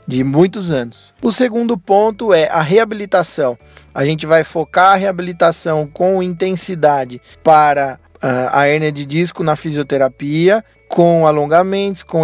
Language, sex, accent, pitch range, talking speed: Portuguese, male, Brazilian, 160-195 Hz, 130 wpm